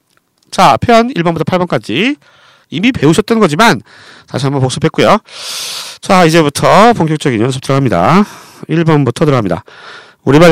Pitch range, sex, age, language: 135-210 Hz, male, 40-59, Korean